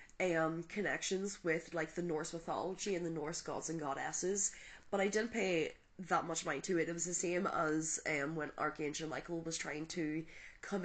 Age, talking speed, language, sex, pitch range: 20-39, 195 wpm, English, female, 155-185 Hz